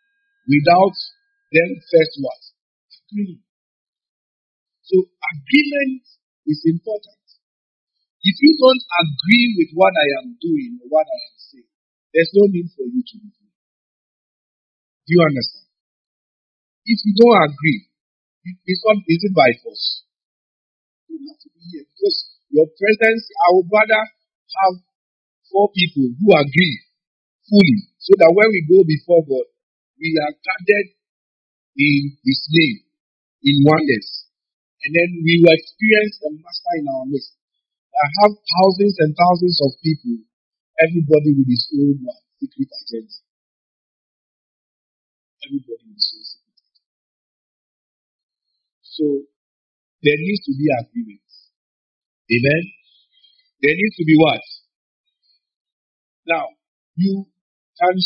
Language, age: English, 50-69